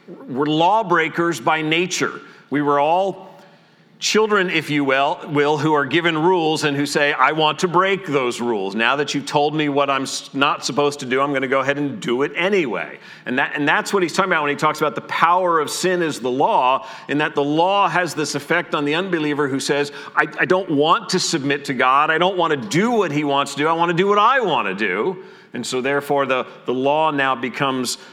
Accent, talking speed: American, 235 wpm